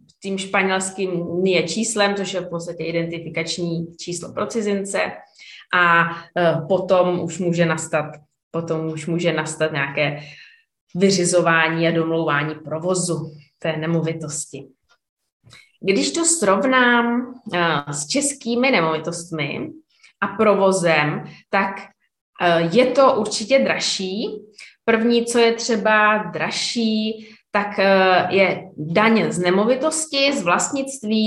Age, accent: 20-39, native